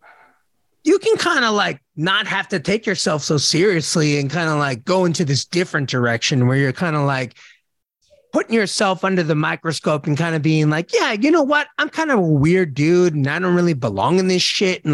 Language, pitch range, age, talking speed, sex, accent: English, 150-200 Hz, 30-49, 220 wpm, male, American